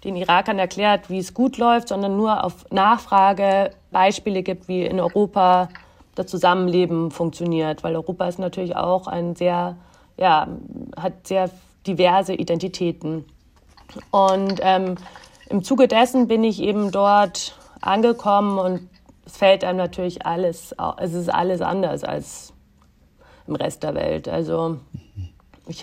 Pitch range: 170-195 Hz